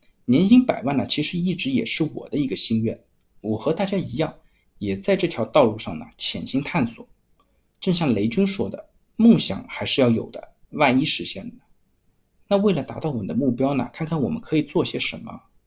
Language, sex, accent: Chinese, male, native